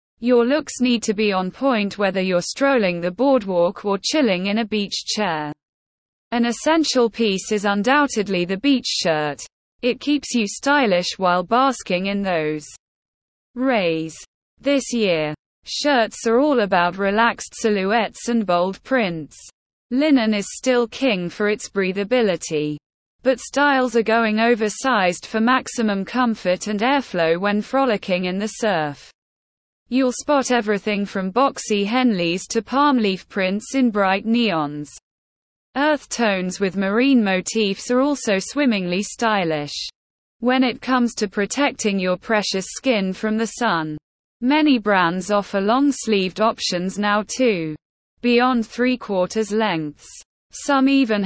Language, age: English, 20-39